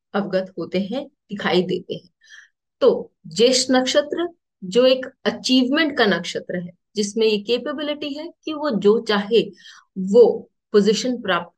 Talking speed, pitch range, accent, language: 135 wpm, 200-270 Hz, Indian, English